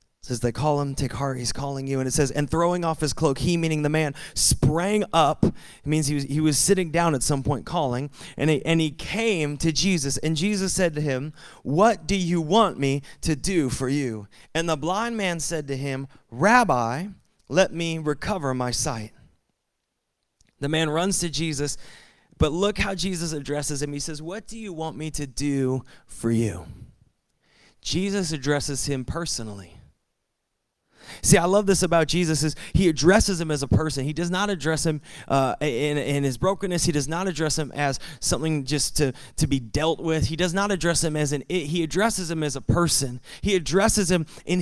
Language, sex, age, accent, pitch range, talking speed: English, male, 30-49, American, 145-180 Hz, 200 wpm